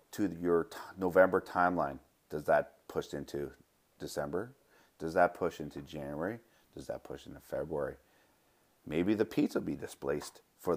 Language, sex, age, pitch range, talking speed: English, male, 30-49, 80-105 Hz, 150 wpm